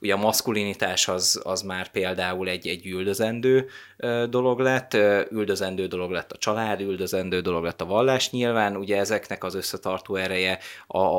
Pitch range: 95-100 Hz